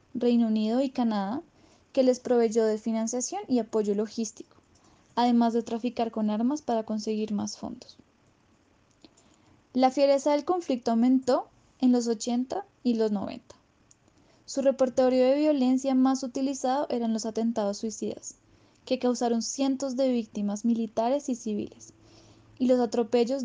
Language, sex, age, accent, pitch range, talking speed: Spanish, female, 10-29, Colombian, 225-265 Hz, 135 wpm